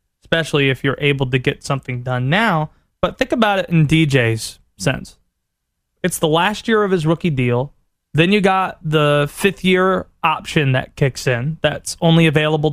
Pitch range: 145-190 Hz